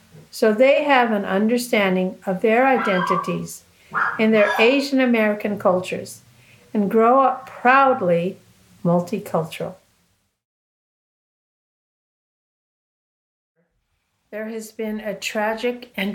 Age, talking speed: 50-69, 90 wpm